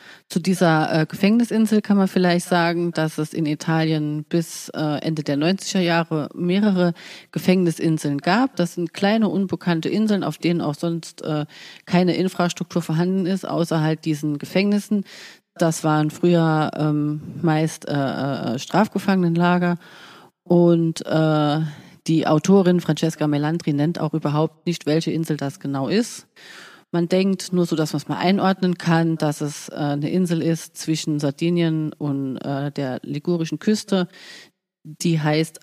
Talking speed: 145 wpm